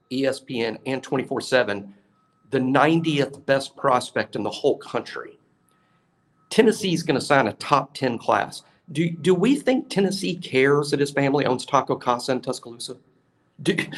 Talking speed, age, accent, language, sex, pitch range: 140 wpm, 50-69, American, English, male, 130-180 Hz